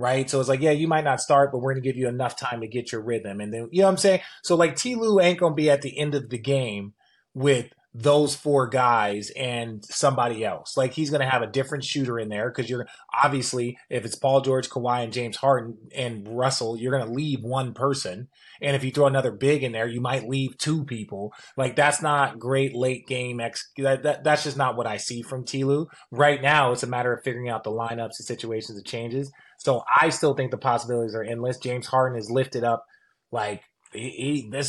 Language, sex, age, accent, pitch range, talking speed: English, male, 20-39, American, 120-140 Hz, 240 wpm